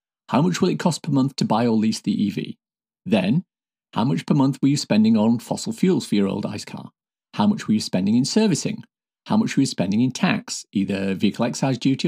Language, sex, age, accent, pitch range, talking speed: English, male, 50-69, British, 130-220 Hz, 235 wpm